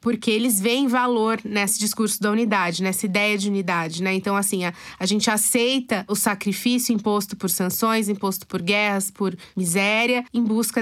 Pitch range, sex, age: 200-240 Hz, female, 20-39